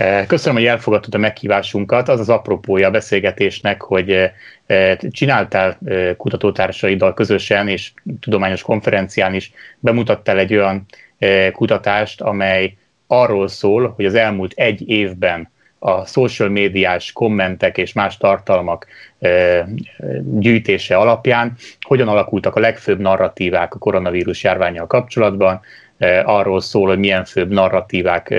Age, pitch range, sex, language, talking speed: 30-49, 95-110 Hz, male, Hungarian, 115 wpm